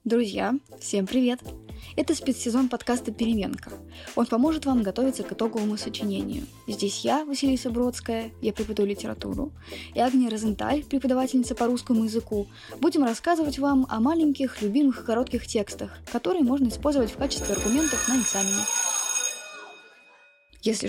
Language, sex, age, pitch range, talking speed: Russian, female, 20-39, 205-260 Hz, 130 wpm